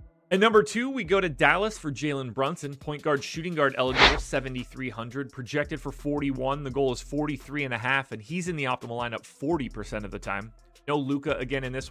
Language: English